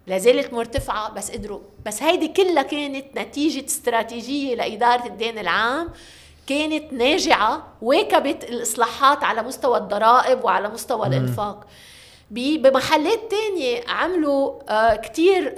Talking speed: 110 wpm